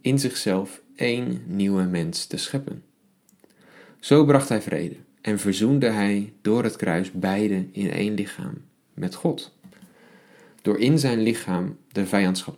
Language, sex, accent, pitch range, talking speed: Dutch, male, Dutch, 95-140 Hz, 140 wpm